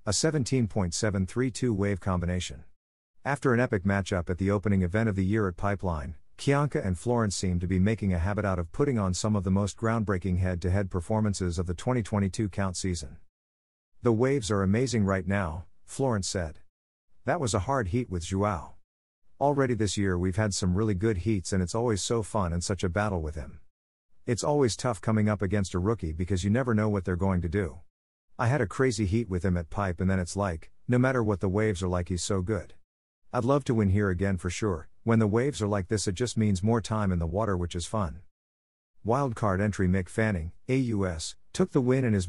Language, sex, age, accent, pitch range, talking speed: English, male, 50-69, American, 90-110 Hz, 215 wpm